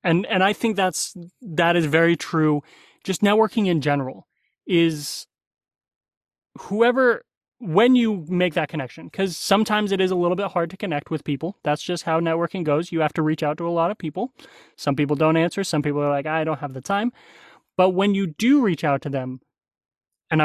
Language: English